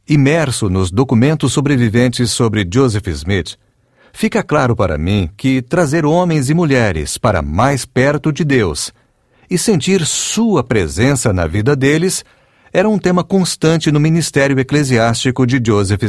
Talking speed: 140 wpm